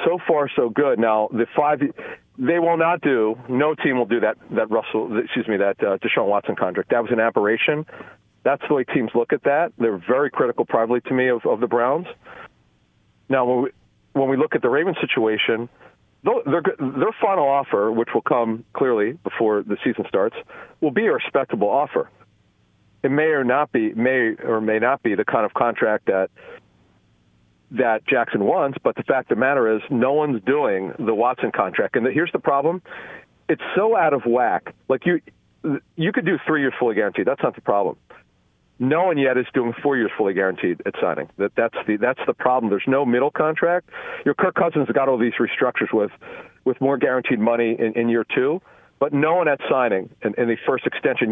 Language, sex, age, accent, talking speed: English, male, 40-59, American, 200 wpm